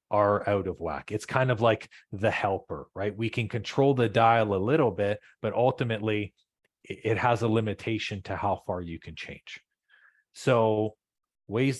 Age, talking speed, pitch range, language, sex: 30-49, 170 wpm, 95-115 Hz, English, male